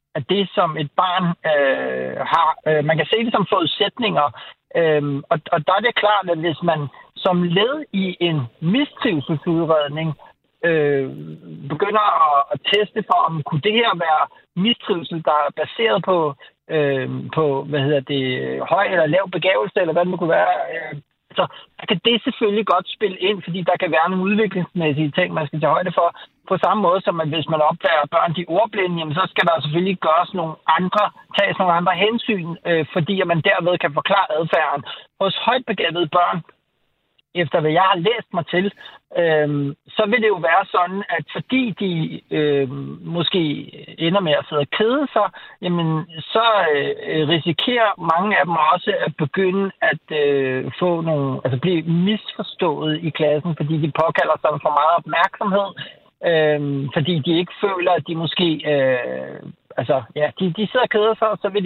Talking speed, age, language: 180 wpm, 60-79, Danish